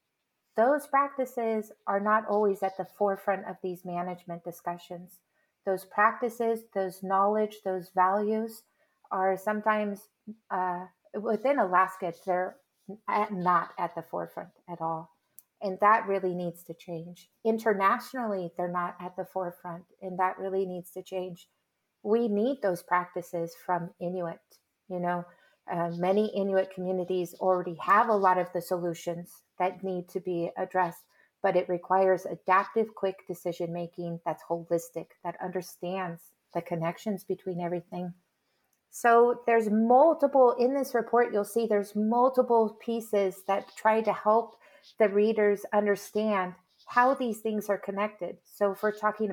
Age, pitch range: 30-49, 180-215 Hz